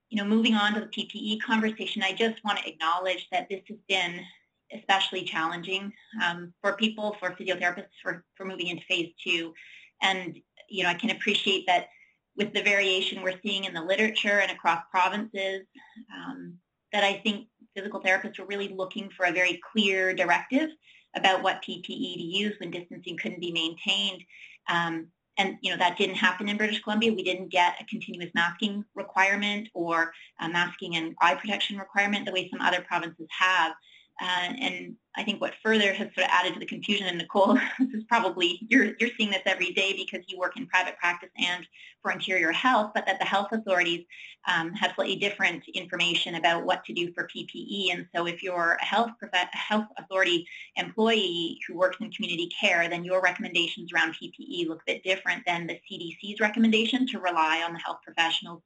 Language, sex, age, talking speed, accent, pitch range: English, female, 30-49, 190 wpm, American, 180-210 Hz